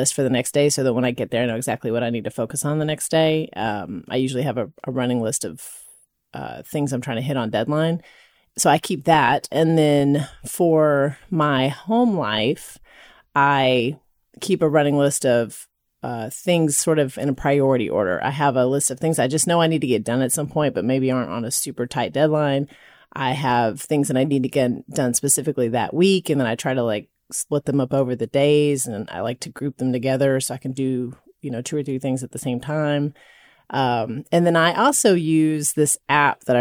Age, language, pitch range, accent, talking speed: 30-49, English, 125-155 Hz, American, 235 wpm